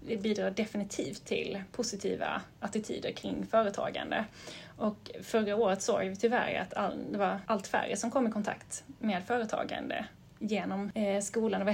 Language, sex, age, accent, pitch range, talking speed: Swedish, female, 30-49, native, 200-230 Hz, 155 wpm